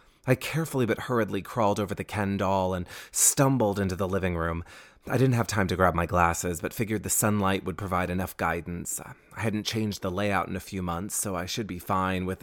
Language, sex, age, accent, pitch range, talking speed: English, male, 30-49, American, 95-120 Hz, 220 wpm